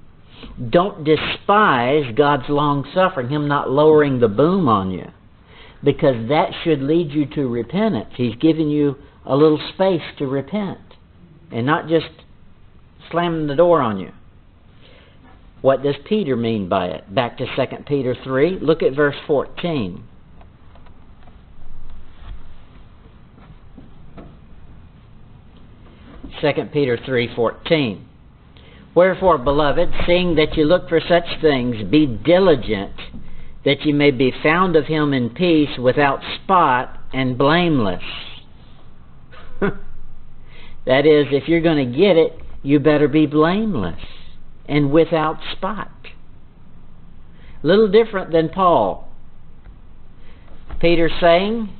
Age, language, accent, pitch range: 60-79, English, American, 110-160 Hz